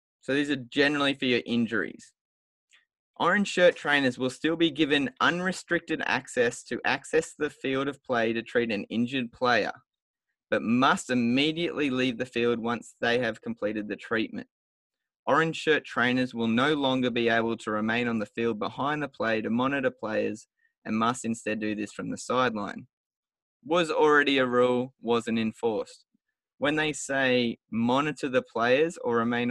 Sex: male